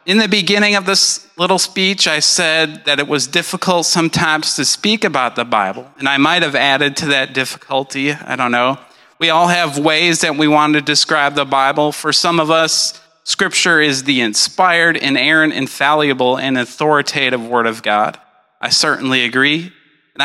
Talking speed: 180 wpm